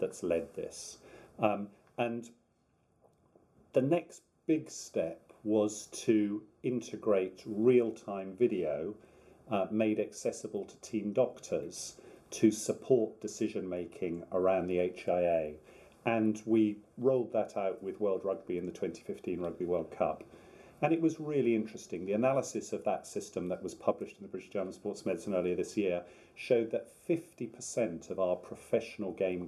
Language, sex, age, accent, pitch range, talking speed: English, male, 40-59, British, 90-120 Hz, 140 wpm